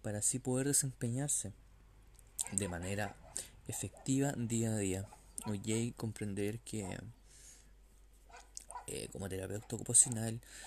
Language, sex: Spanish, male